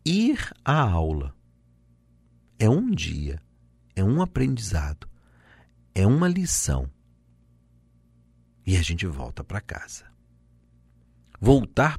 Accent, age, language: Brazilian, 50-69, Portuguese